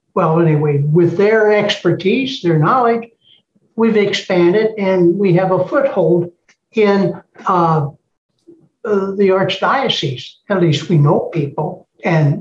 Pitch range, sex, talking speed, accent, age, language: 160-210 Hz, male, 115 wpm, American, 60-79, English